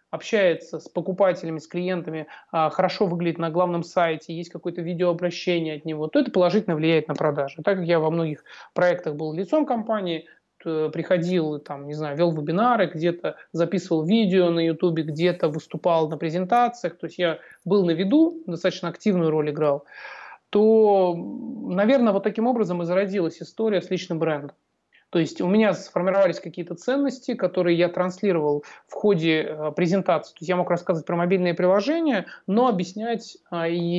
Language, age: Russian, 30-49